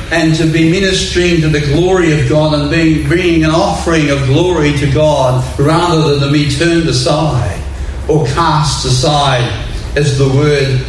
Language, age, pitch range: English, 60-79, 125-155 Hz